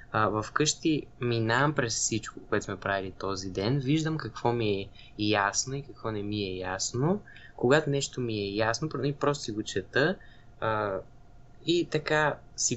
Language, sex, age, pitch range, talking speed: Bulgarian, male, 20-39, 105-140 Hz, 160 wpm